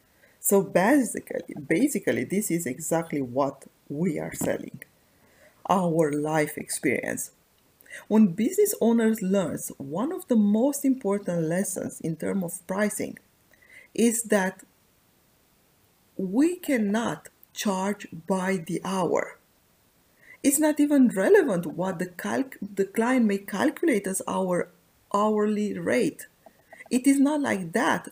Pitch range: 170-235 Hz